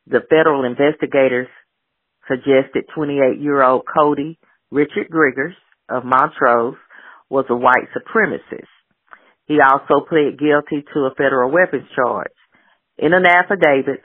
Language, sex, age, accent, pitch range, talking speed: English, female, 40-59, American, 135-175 Hz, 110 wpm